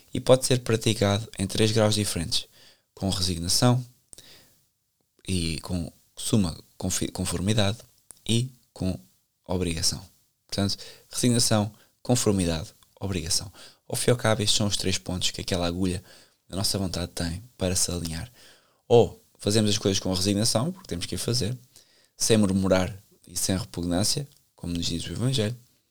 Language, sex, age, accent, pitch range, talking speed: Portuguese, male, 20-39, Portuguese, 90-115 Hz, 135 wpm